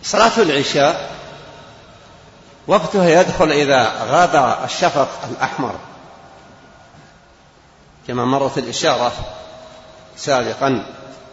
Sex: male